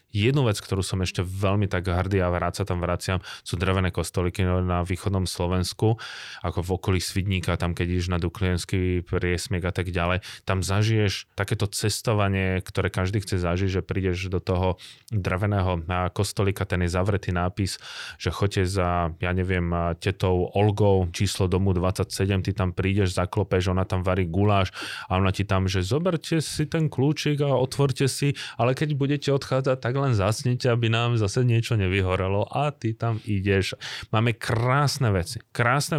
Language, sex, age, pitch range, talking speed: Slovak, male, 20-39, 90-110 Hz, 165 wpm